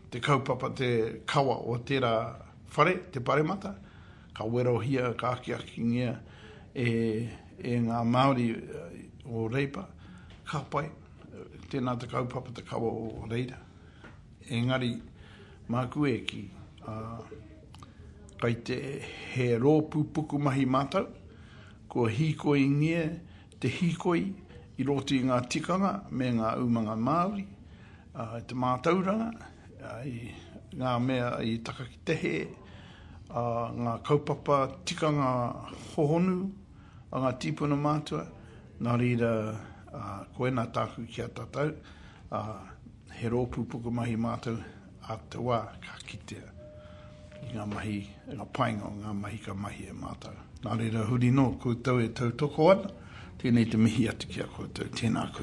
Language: English